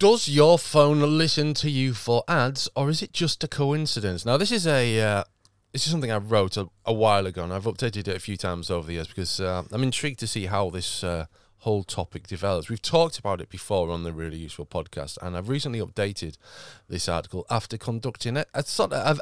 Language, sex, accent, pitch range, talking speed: English, male, British, 100-140 Hz, 220 wpm